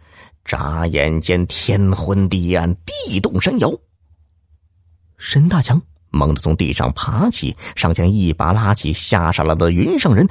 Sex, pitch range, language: male, 80-105 Hz, Chinese